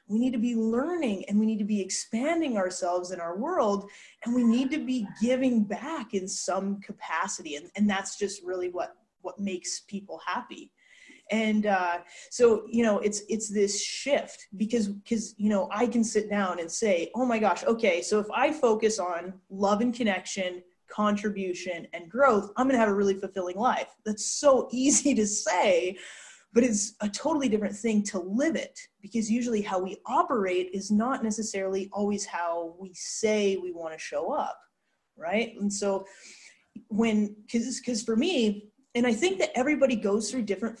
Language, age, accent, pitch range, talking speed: English, 20-39, American, 200-245 Hz, 180 wpm